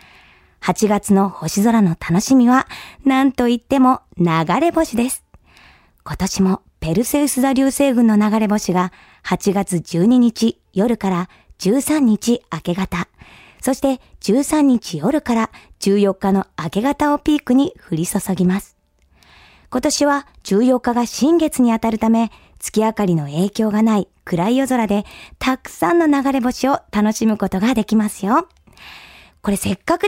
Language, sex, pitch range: Japanese, male, 200-275 Hz